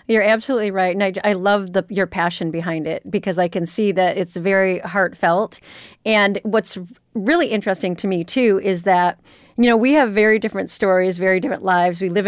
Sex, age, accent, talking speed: female, 40-59, American, 200 wpm